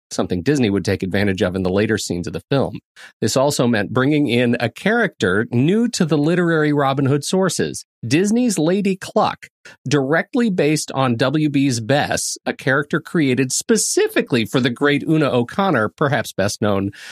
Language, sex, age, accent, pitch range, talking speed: English, male, 40-59, American, 110-160 Hz, 165 wpm